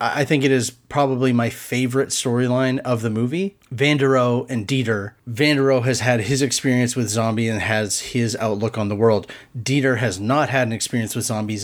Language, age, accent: English, 30-49, American